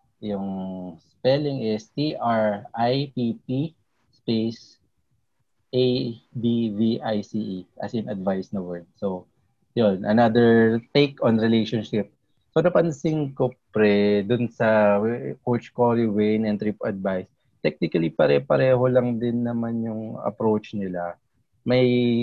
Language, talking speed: English, 105 wpm